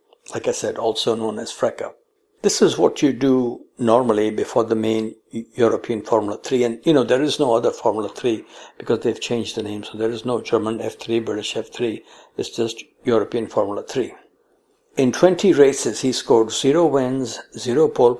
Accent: Indian